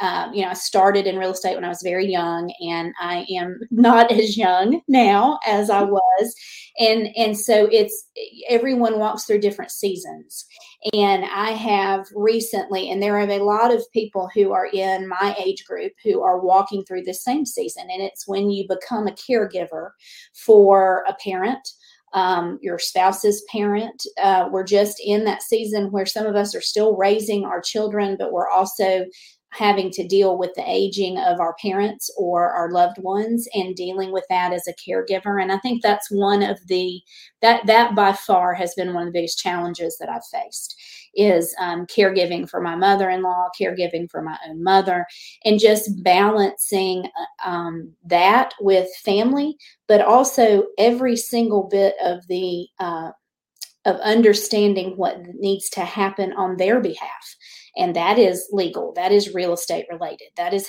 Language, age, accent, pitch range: English, 30-49, American, 185-220 Hz